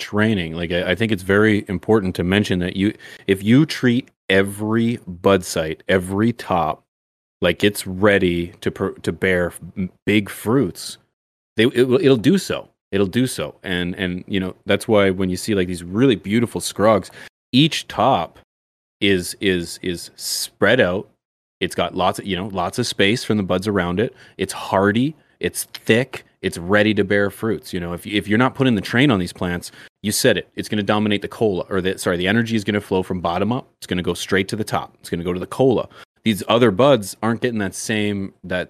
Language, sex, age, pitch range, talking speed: English, male, 30-49, 90-115 Hz, 210 wpm